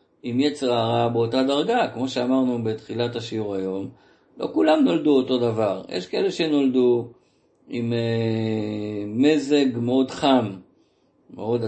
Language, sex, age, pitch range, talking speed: Hebrew, male, 50-69, 120-180 Hz, 120 wpm